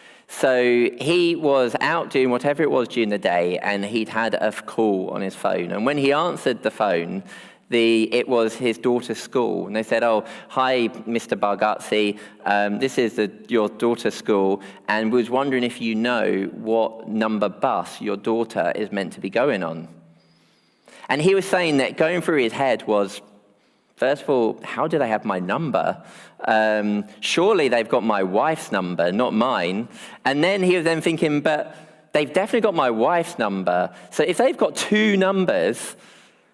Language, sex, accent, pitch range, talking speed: English, male, British, 105-145 Hz, 175 wpm